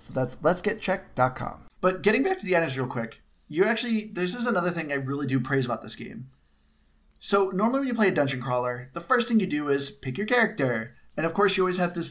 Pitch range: 130-185 Hz